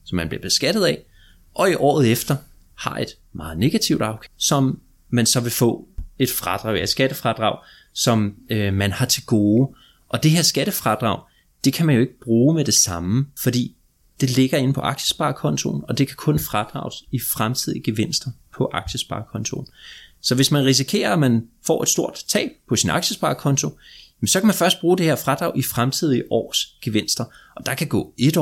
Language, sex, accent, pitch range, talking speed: Danish, male, native, 110-135 Hz, 185 wpm